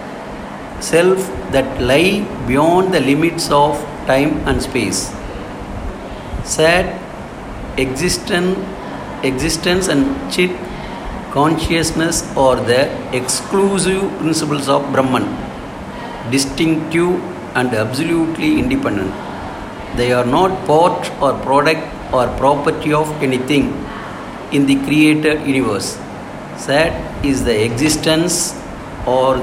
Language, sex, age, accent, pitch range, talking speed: English, male, 50-69, Indian, 130-165 Hz, 90 wpm